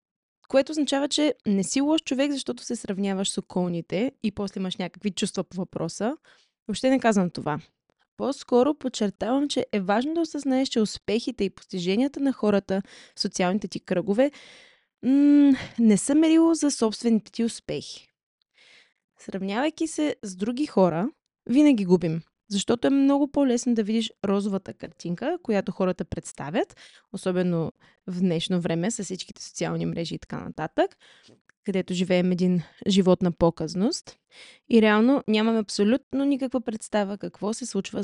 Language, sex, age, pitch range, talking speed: Bulgarian, female, 20-39, 190-260 Hz, 145 wpm